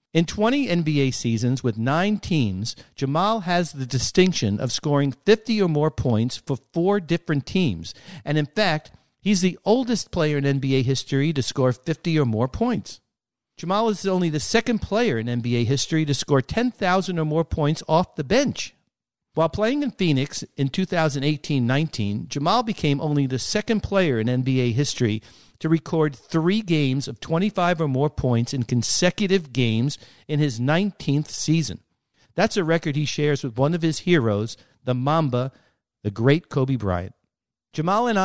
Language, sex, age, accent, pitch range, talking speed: English, male, 50-69, American, 130-175 Hz, 165 wpm